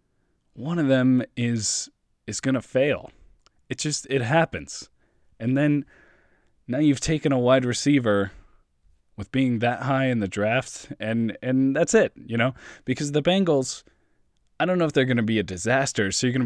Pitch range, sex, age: 100-130 Hz, male, 20-39